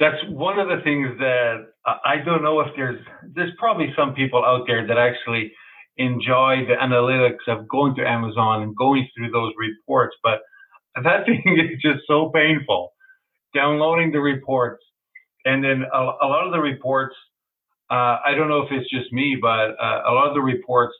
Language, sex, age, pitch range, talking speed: English, male, 50-69, 115-145 Hz, 185 wpm